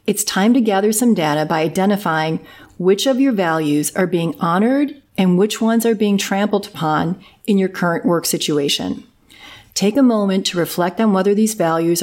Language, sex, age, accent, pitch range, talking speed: English, female, 40-59, American, 170-215 Hz, 180 wpm